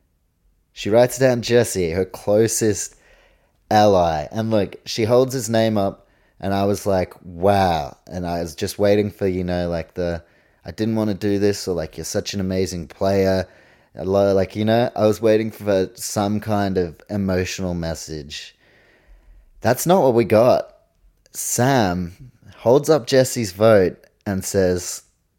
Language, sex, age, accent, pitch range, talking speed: English, male, 30-49, Australian, 90-115 Hz, 155 wpm